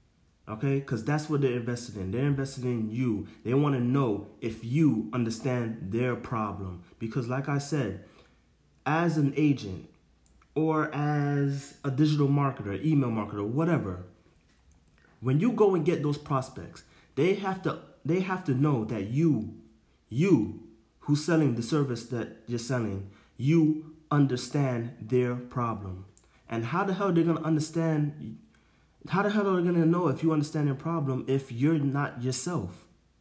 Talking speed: 160 wpm